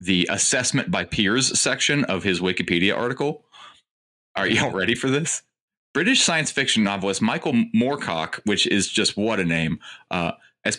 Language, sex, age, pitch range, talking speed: English, male, 30-49, 100-130 Hz, 160 wpm